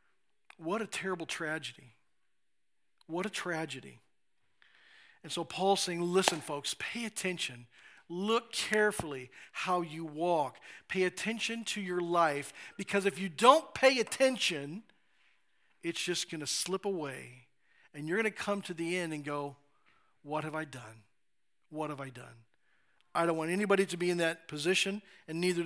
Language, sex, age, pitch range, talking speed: English, male, 40-59, 165-220 Hz, 155 wpm